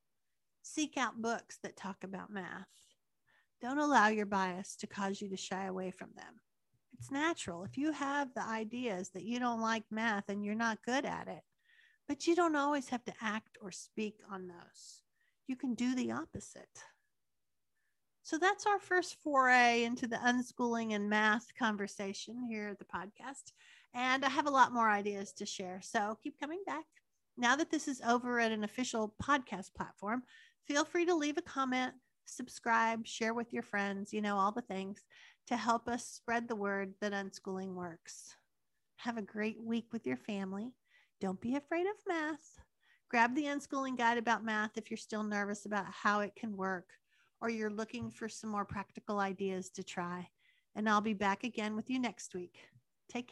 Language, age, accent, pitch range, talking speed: English, 50-69, American, 205-260 Hz, 185 wpm